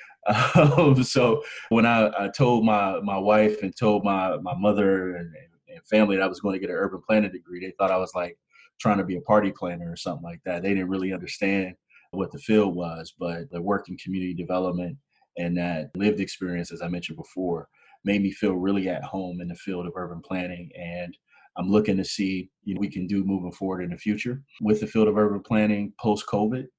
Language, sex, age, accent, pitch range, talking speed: English, male, 20-39, American, 90-105 Hz, 220 wpm